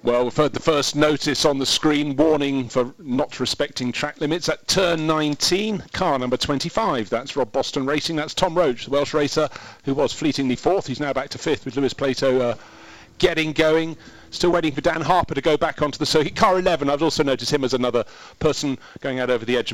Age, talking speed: 40-59, 215 wpm